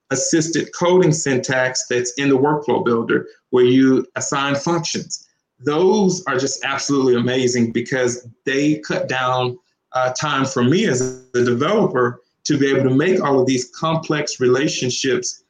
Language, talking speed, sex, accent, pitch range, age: English, 145 wpm, male, American, 125-150 Hz, 40-59